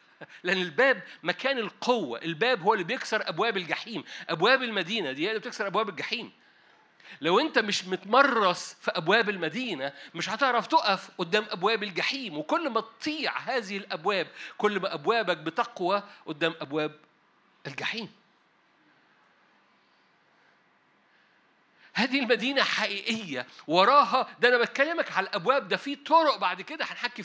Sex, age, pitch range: male, 50-69, 175-230 Hz